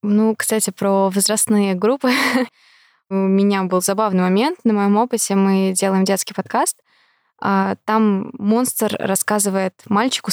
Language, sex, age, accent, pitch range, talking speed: Russian, female, 20-39, native, 195-235 Hz, 120 wpm